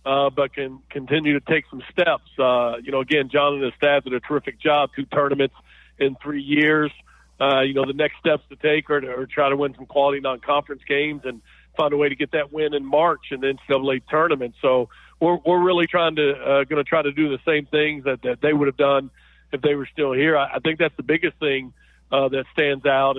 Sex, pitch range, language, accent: male, 135-150 Hz, English, American